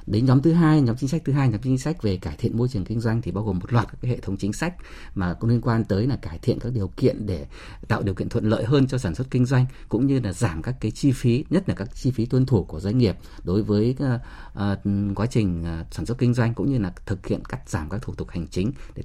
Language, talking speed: Vietnamese, 290 wpm